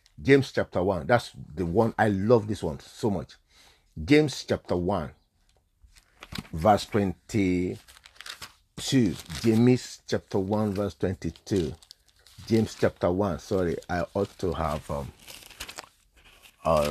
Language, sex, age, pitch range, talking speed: English, male, 50-69, 95-140 Hz, 110 wpm